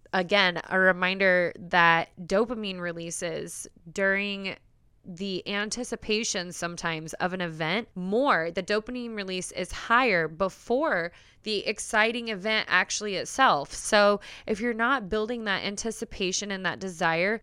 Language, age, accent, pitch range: English, 20-39, American, 175-220 Hz